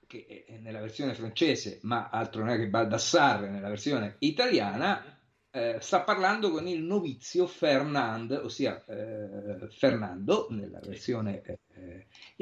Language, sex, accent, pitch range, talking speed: Italian, male, native, 105-140 Hz, 130 wpm